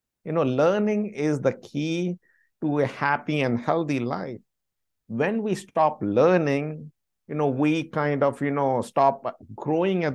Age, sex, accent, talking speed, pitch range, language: 60-79, male, Indian, 155 wpm, 125-175 Hz, English